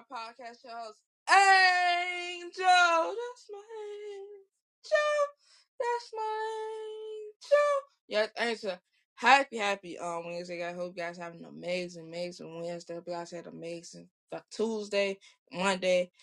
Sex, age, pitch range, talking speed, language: female, 20-39, 170-205 Hz, 105 wpm, English